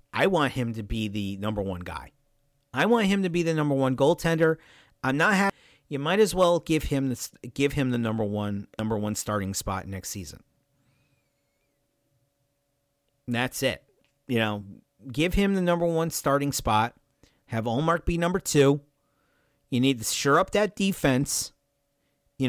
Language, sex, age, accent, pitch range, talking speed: English, male, 40-59, American, 130-165 Hz, 170 wpm